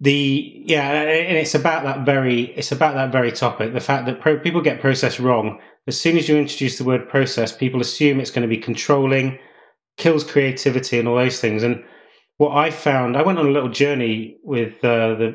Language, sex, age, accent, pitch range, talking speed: English, male, 30-49, British, 120-150 Hz, 210 wpm